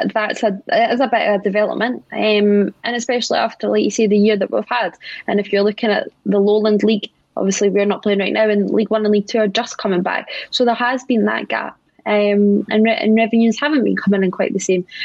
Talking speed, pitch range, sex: 245 wpm, 205-245 Hz, female